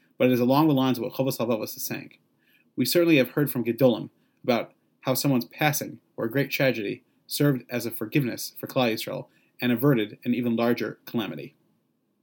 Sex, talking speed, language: male, 190 wpm, English